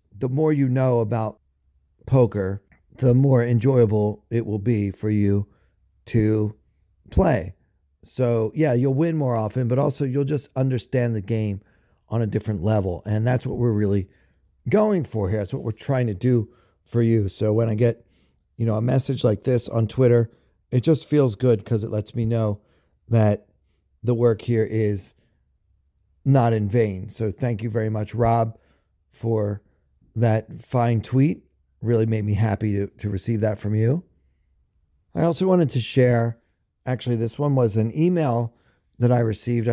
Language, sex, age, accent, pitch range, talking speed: English, male, 40-59, American, 105-130 Hz, 170 wpm